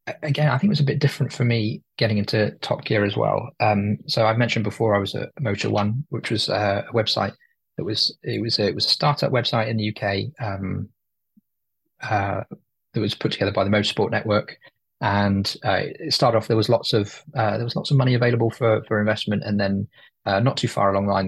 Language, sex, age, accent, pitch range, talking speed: English, male, 20-39, British, 100-120 Hz, 230 wpm